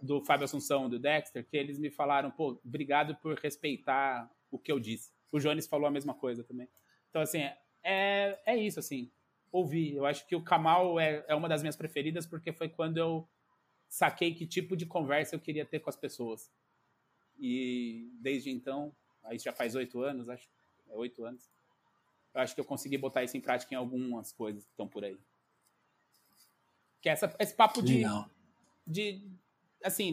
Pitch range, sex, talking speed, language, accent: 135-165 Hz, male, 185 wpm, Portuguese, Brazilian